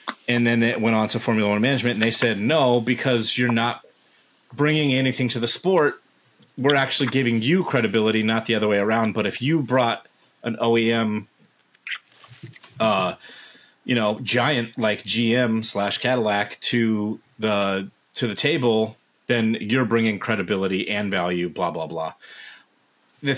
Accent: American